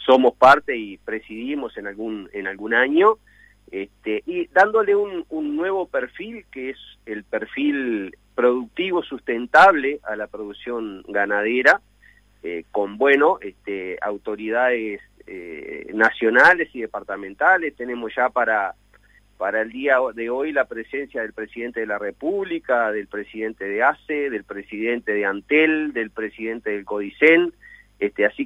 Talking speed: 125 wpm